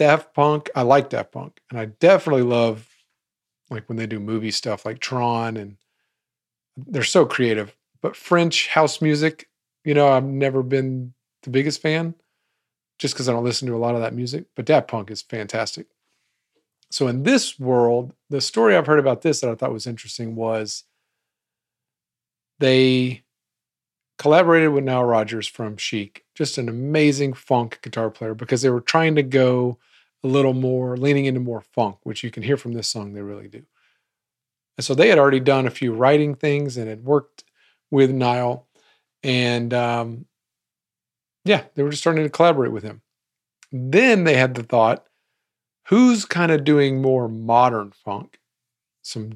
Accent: American